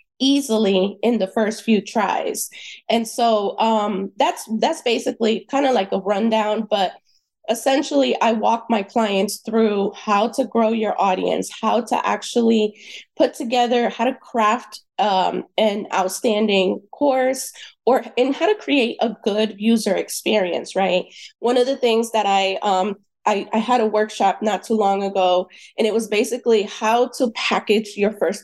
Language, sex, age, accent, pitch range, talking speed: English, female, 20-39, American, 205-240 Hz, 160 wpm